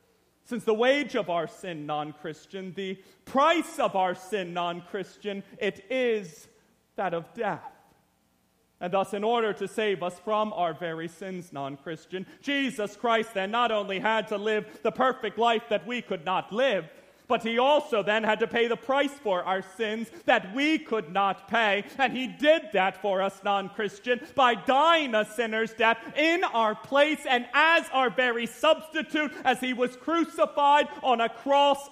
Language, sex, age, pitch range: English, male, 30-49, 215-285 Hz